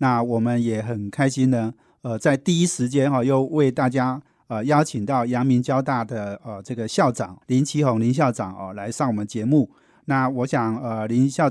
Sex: male